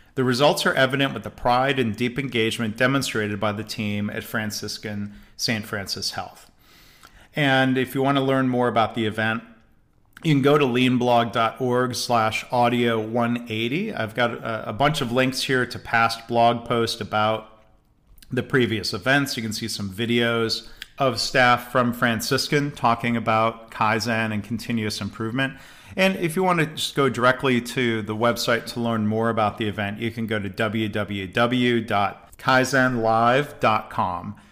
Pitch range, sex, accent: 110-130 Hz, male, American